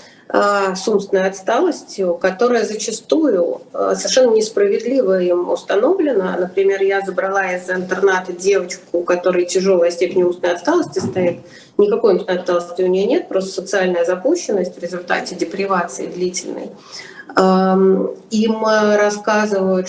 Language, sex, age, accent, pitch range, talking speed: Russian, female, 30-49, native, 180-205 Hz, 110 wpm